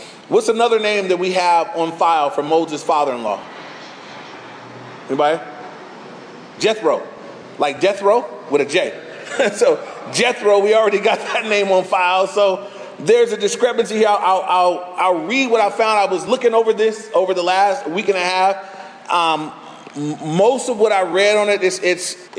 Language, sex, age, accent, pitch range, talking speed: English, male, 30-49, American, 165-215 Hz, 170 wpm